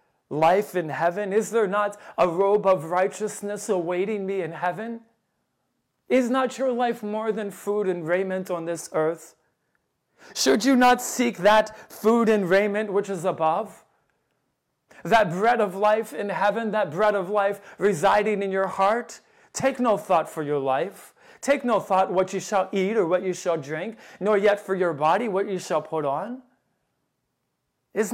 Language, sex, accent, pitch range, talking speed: English, male, American, 180-220 Hz, 170 wpm